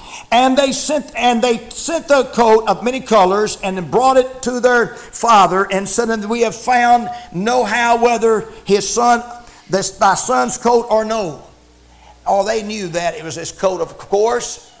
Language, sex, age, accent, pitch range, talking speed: English, male, 60-79, American, 210-255 Hz, 175 wpm